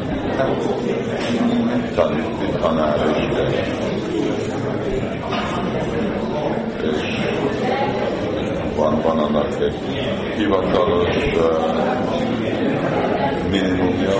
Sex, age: male, 50-69